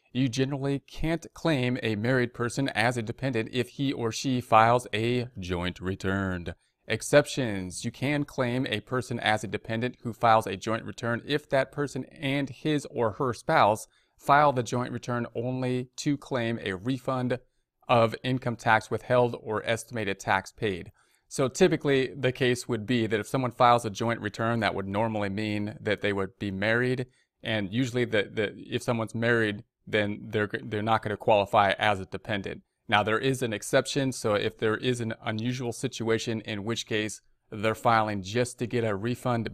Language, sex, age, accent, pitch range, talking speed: English, male, 30-49, American, 105-125 Hz, 175 wpm